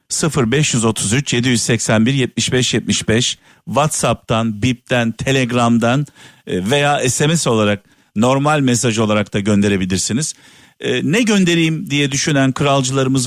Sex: male